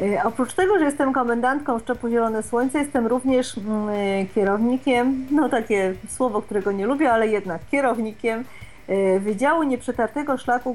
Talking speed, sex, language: 130 wpm, female, Polish